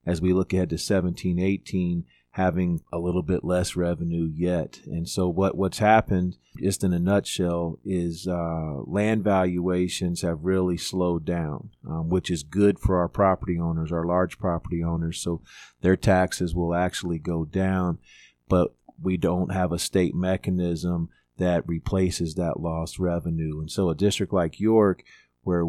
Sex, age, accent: male, 40-59, American